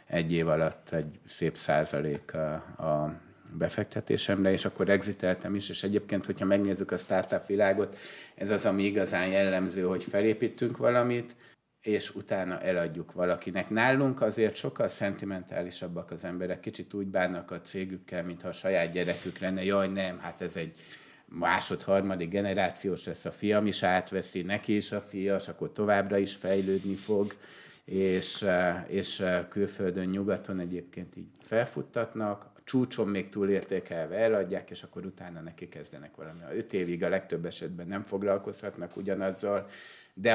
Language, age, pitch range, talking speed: Hungarian, 50-69, 90-105 Hz, 145 wpm